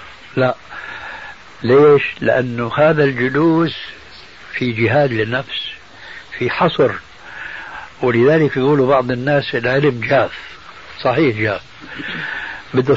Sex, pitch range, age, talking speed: male, 120-155 Hz, 60-79, 90 wpm